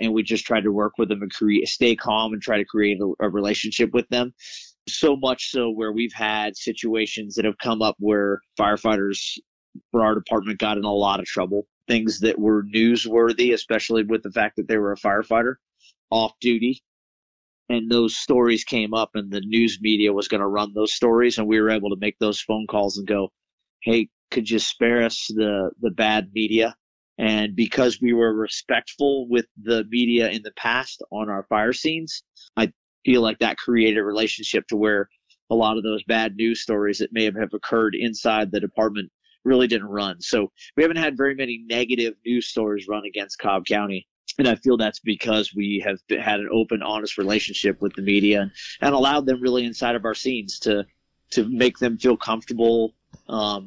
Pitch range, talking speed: 105-115 Hz, 200 wpm